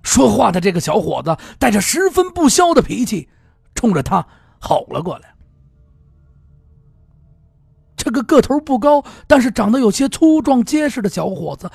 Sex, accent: male, native